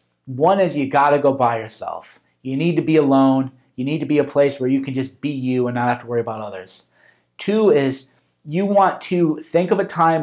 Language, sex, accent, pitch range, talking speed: English, male, American, 130-165 Hz, 235 wpm